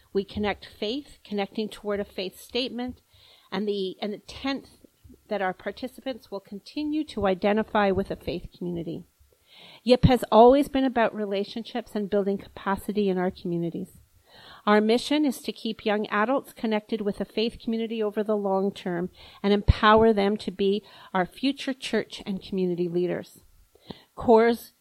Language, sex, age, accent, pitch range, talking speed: English, female, 40-59, American, 195-235 Hz, 155 wpm